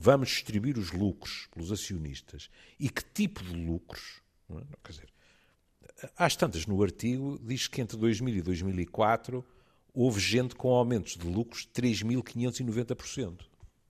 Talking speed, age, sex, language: 140 wpm, 60-79, male, Portuguese